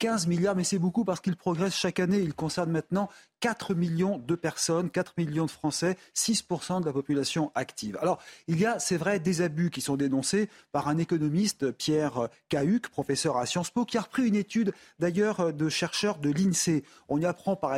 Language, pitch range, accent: French, 150-195 Hz, French